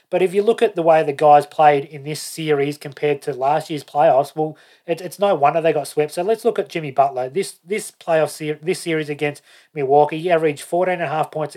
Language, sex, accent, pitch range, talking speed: English, male, Australian, 145-160 Hz, 210 wpm